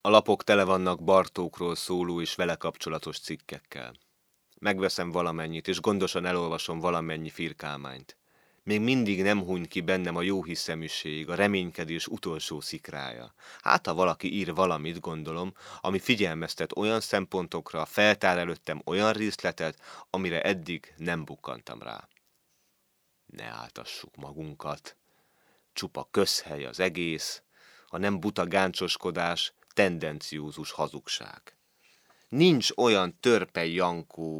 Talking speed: 110 wpm